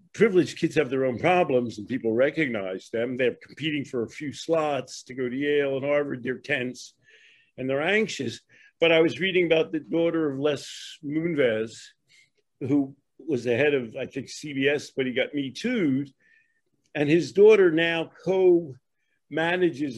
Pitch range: 135-175 Hz